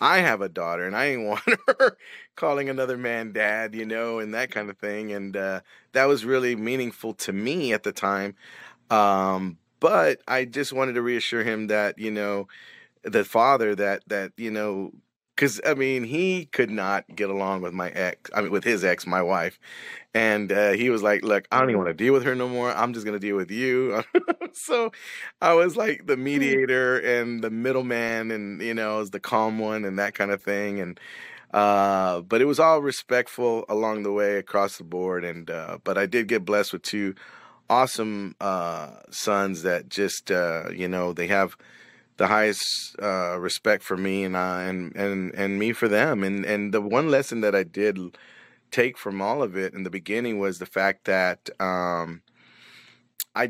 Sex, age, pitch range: male, 30-49, 95-120 Hz